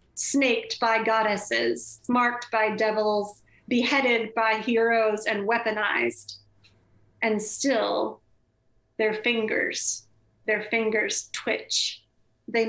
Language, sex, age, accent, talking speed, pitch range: English, female, 30-49, American, 90 wpm, 215-285 Hz